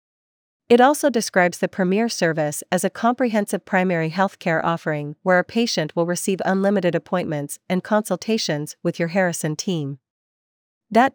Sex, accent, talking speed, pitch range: female, American, 145 wpm, 165-200 Hz